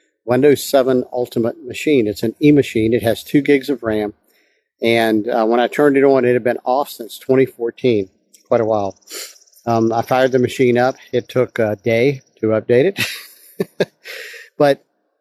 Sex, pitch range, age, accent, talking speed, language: male, 115-140 Hz, 50-69, American, 170 wpm, English